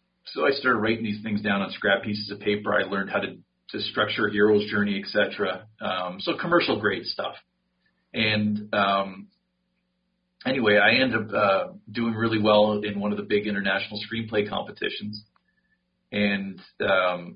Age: 40-59